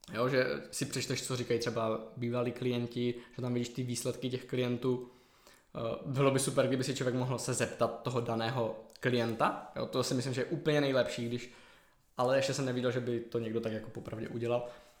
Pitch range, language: 120-135 Hz, Czech